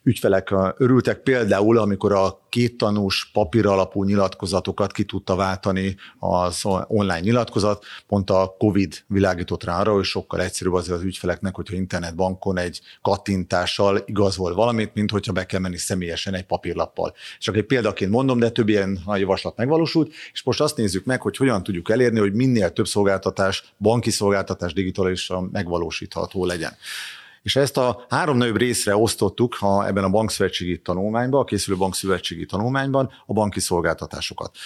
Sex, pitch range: male, 95-115 Hz